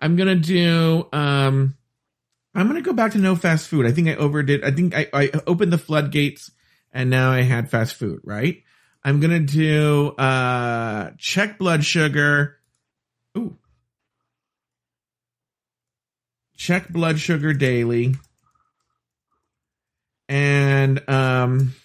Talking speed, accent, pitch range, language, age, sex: 120 wpm, American, 125-170 Hz, English, 40-59, male